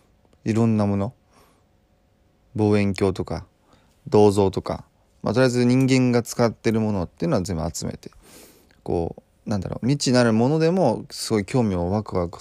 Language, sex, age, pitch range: Japanese, male, 20-39, 95-125 Hz